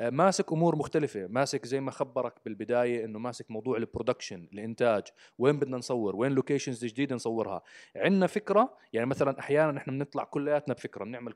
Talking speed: 160 wpm